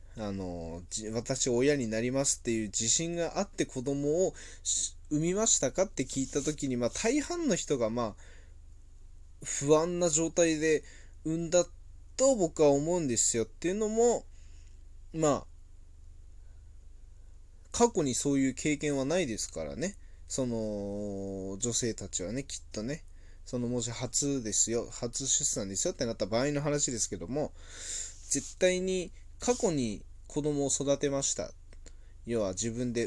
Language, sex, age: Japanese, male, 20-39